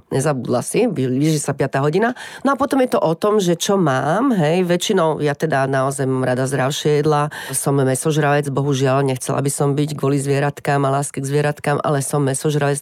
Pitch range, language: 135-170 Hz, Slovak